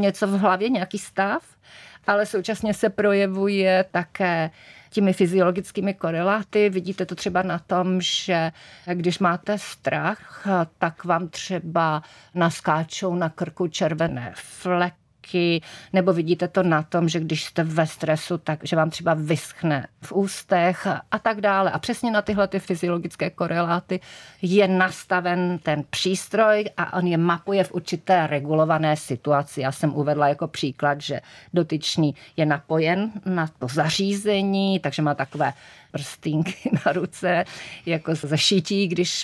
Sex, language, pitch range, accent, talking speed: female, Czech, 155-190 Hz, native, 140 wpm